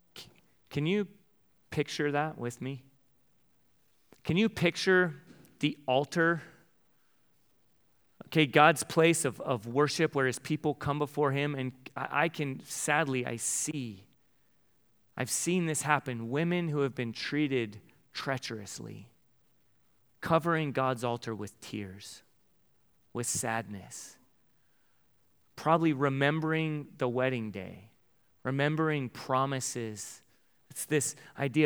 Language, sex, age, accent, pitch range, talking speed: English, male, 30-49, American, 115-145 Hz, 105 wpm